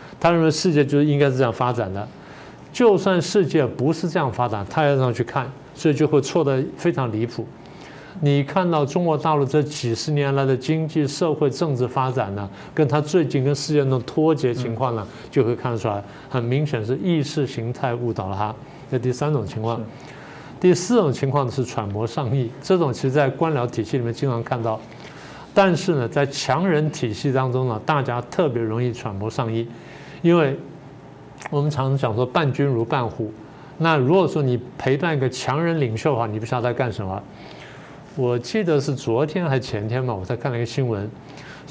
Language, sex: Chinese, male